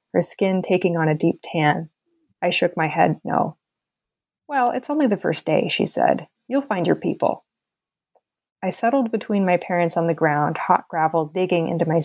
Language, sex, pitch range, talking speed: English, female, 165-190 Hz, 185 wpm